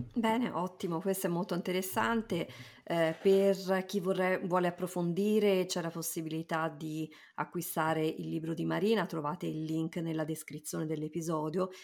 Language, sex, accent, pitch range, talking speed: Italian, female, native, 160-195 Hz, 130 wpm